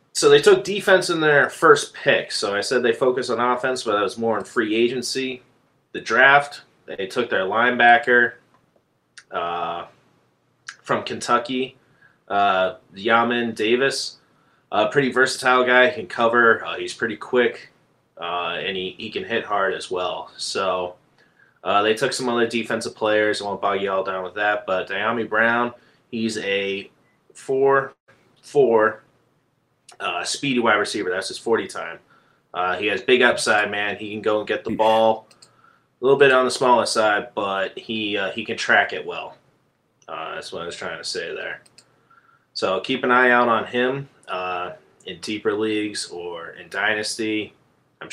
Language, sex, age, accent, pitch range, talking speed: English, male, 30-49, American, 105-130 Hz, 170 wpm